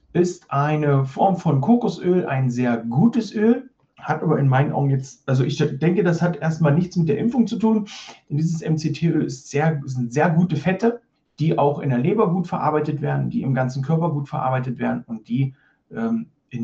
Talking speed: 200 wpm